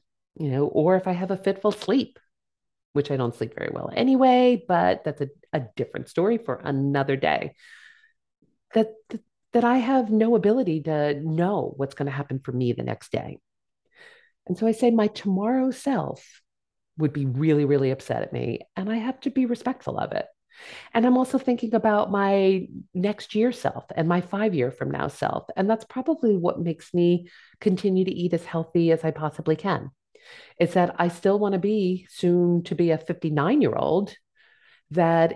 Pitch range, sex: 160-240 Hz, female